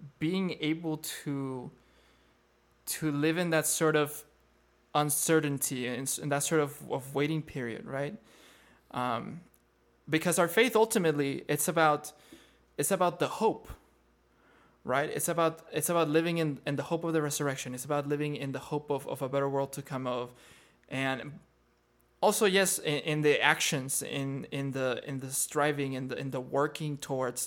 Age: 20-39